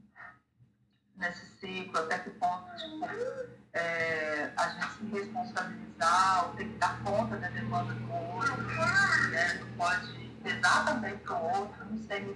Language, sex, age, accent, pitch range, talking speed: Portuguese, female, 40-59, Brazilian, 175-230 Hz, 155 wpm